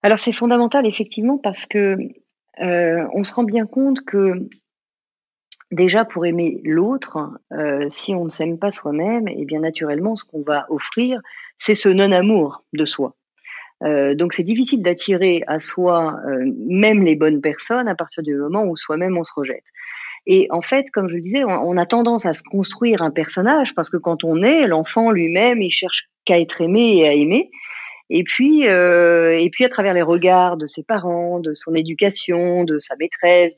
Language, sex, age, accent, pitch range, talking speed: French, female, 40-59, French, 165-240 Hz, 185 wpm